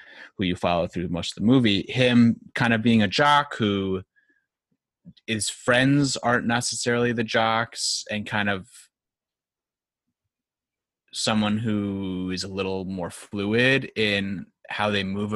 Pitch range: 95-120 Hz